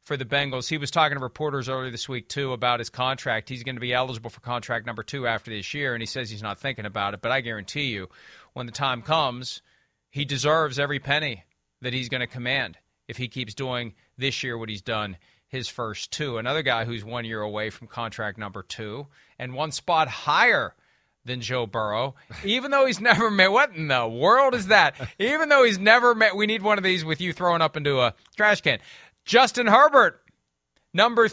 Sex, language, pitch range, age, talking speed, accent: male, English, 120-195 Hz, 40-59, 215 wpm, American